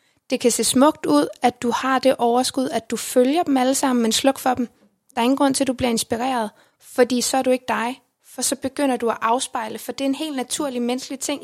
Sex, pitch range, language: female, 240-275 Hz, English